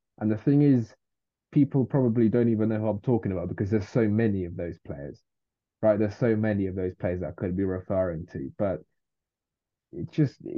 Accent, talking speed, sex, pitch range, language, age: British, 205 wpm, male, 95-120 Hz, English, 20-39